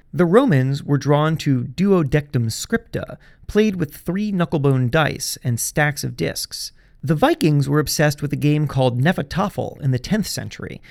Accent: American